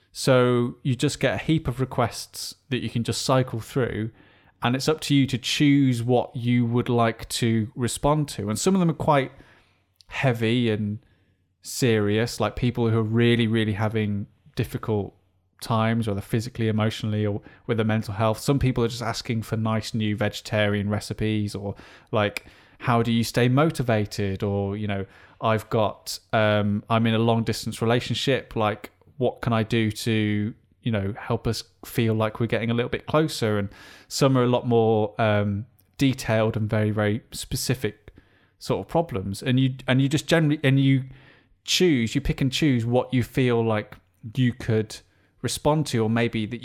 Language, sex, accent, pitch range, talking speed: English, male, British, 105-125 Hz, 180 wpm